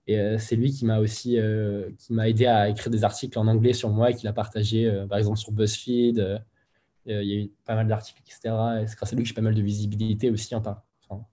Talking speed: 280 wpm